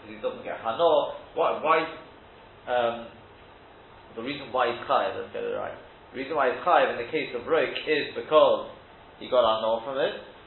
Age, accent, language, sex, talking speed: 30-49, British, English, male, 185 wpm